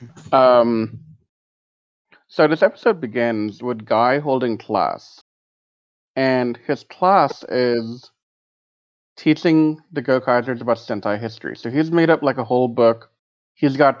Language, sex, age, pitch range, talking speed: English, male, 30-49, 110-140 Hz, 125 wpm